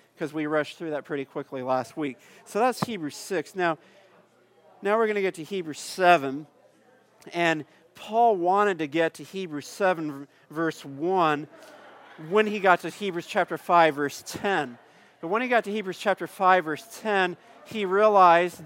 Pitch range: 150-195 Hz